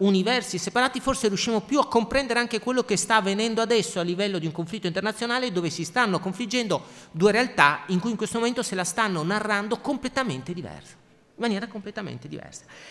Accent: native